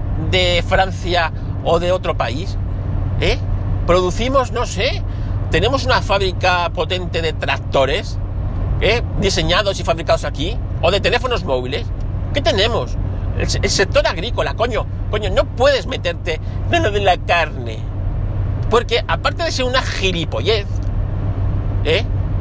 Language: Spanish